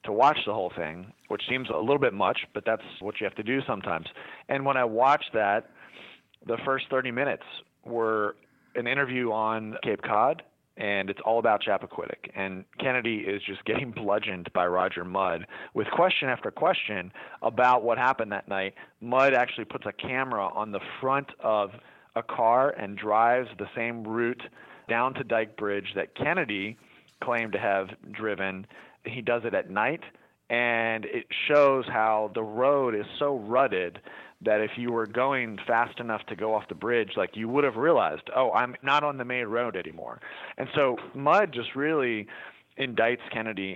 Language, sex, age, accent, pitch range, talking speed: English, male, 30-49, American, 100-125 Hz, 175 wpm